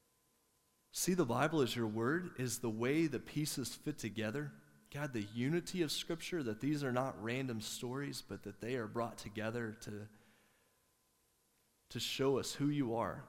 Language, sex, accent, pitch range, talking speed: English, male, American, 105-120 Hz, 165 wpm